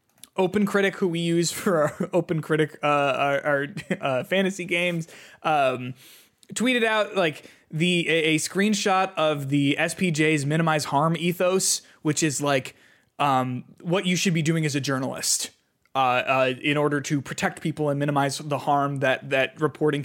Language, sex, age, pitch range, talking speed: English, male, 20-39, 150-205 Hz, 160 wpm